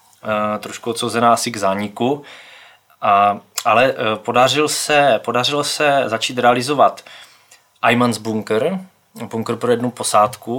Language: Czech